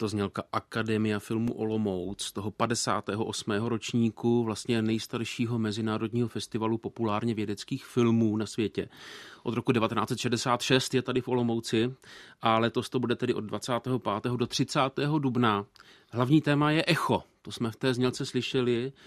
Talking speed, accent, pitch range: 140 wpm, native, 110-130 Hz